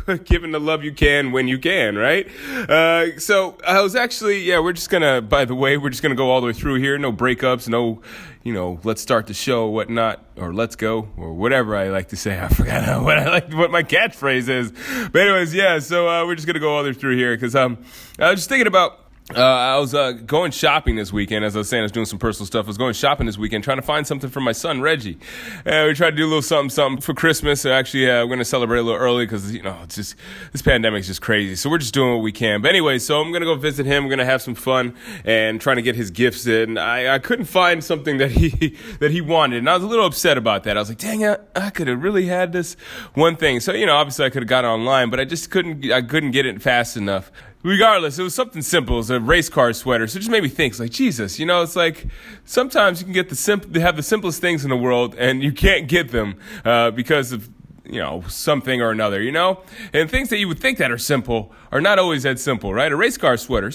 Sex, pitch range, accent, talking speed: male, 115-170 Hz, American, 275 wpm